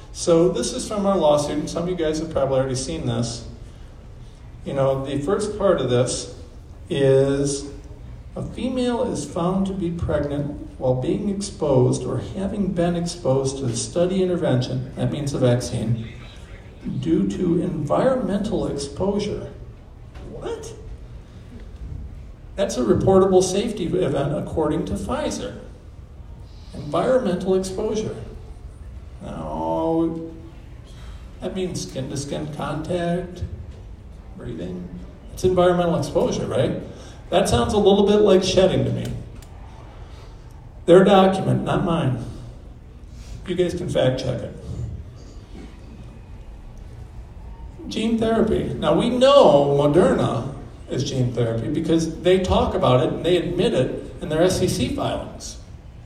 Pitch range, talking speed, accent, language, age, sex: 115-180 Hz, 120 wpm, American, English, 50-69, male